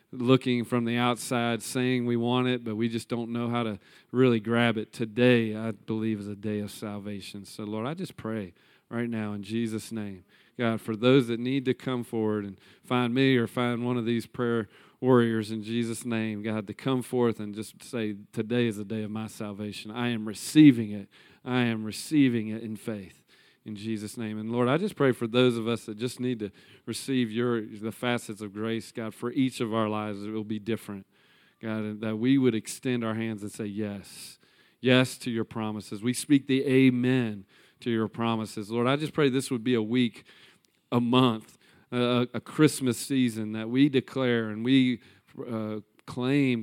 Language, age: English, 40-59